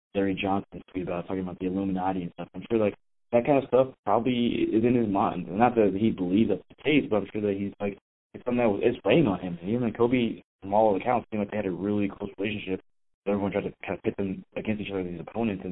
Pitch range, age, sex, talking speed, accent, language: 95-105 Hz, 20-39, male, 265 wpm, American, English